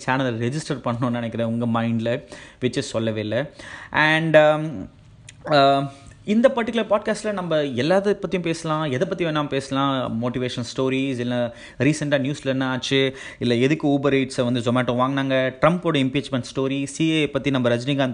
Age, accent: 30-49, native